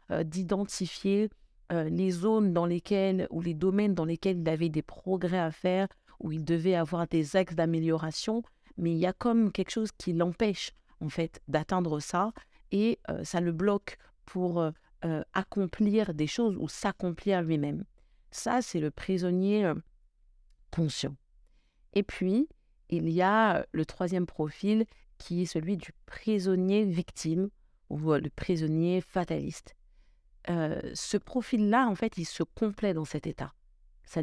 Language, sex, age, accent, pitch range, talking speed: French, female, 50-69, French, 160-205 Hz, 145 wpm